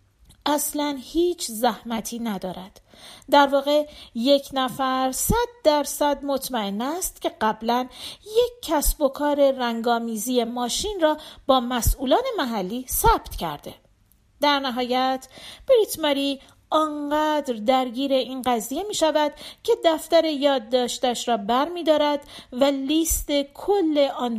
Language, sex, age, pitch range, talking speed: Persian, female, 40-59, 230-305 Hz, 115 wpm